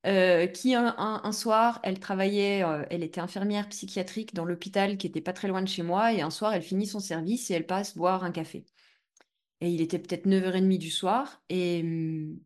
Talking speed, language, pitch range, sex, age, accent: 210 wpm, French, 175-230 Hz, female, 20-39, French